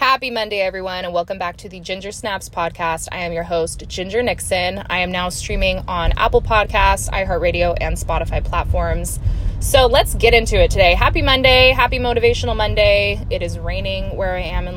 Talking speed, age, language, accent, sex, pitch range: 185 wpm, 20-39, English, American, female, 170-230 Hz